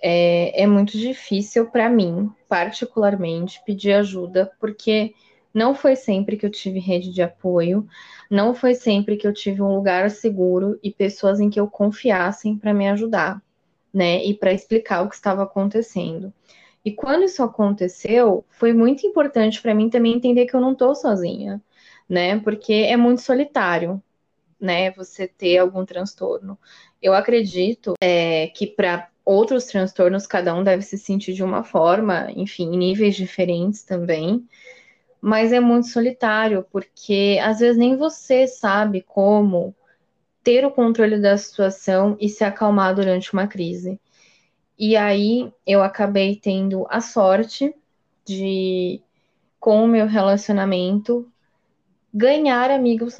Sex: female